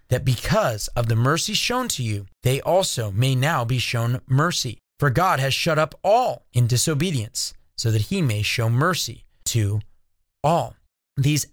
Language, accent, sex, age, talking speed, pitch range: English, American, male, 30-49, 165 wpm, 125-185 Hz